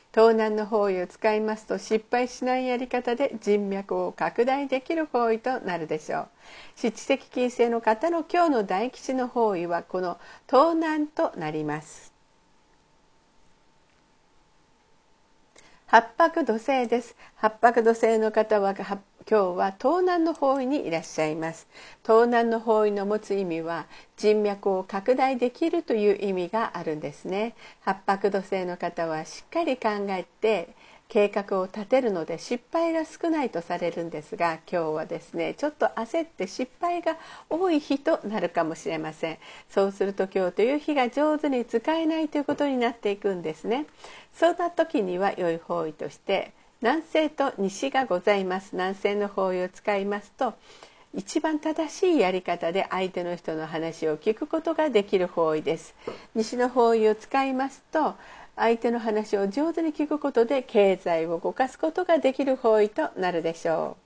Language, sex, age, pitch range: Japanese, female, 50-69, 185-270 Hz